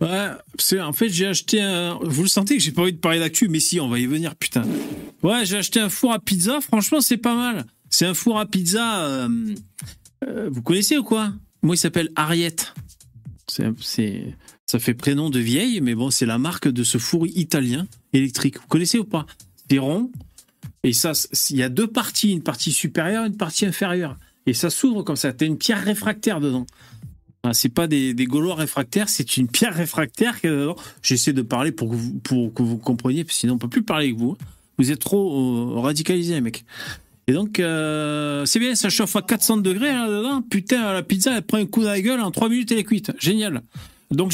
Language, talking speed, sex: French, 220 wpm, male